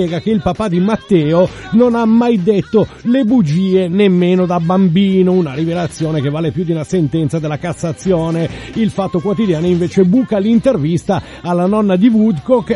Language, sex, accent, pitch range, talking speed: Italian, male, native, 170-210 Hz, 160 wpm